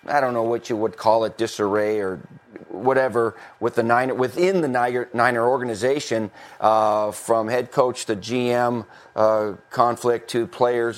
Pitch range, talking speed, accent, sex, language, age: 115-135 Hz, 150 wpm, American, male, English, 40-59